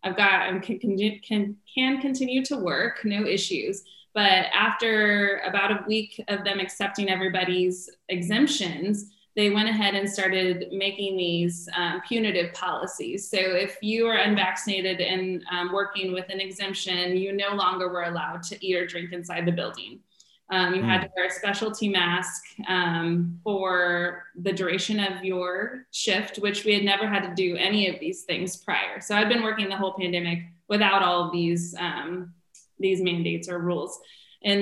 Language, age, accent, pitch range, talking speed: English, 20-39, American, 180-210 Hz, 170 wpm